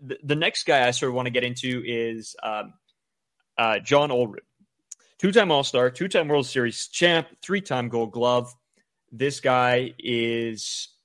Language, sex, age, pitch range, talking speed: English, male, 20-39, 120-145 Hz, 145 wpm